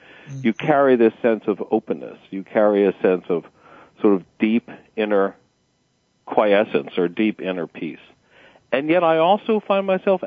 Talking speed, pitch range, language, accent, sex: 150 wpm, 105-170 Hz, English, American, male